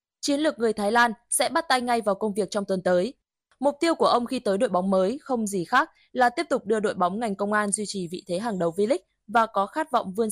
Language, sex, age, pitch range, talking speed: Vietnamese, female, 20-39, 195-260 Hz, 280 wpm